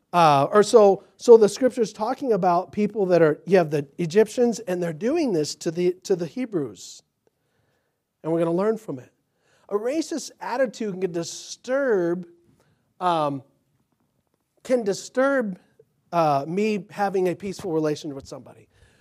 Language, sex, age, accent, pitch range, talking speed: English, male, 40-59, American, 160-230 Hz, 145 wpm